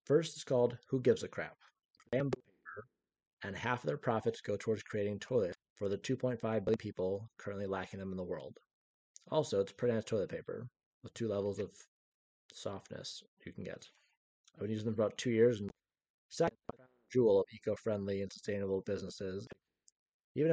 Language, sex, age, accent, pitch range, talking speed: English, male, 30-49, American, 100-125 Hz, 175 wpm